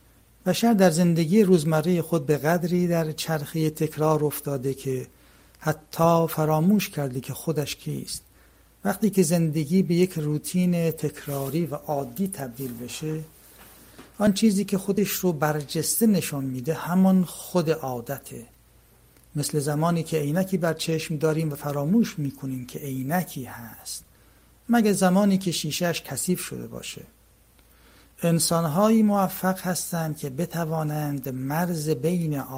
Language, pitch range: Persian, 140-175 Hz